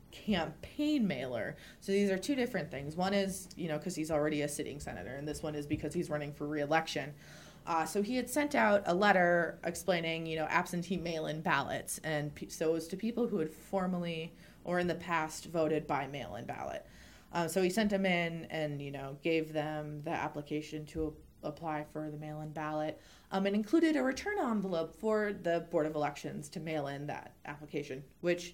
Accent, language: American, English